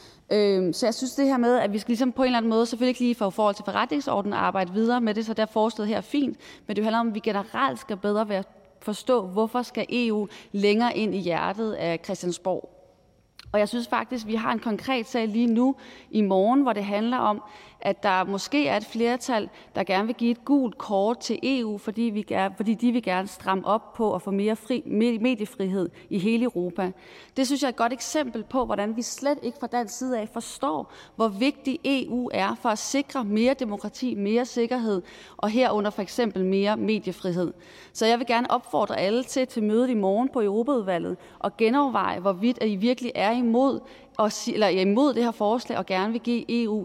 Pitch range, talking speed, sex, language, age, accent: 205-245 Hz, 220 wpm, female, Danish, 30-49, native